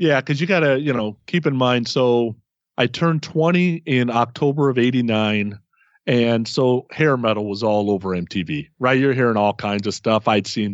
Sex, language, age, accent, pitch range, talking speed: male, English, 40-59, American, 115-155 Hz, 190 wpm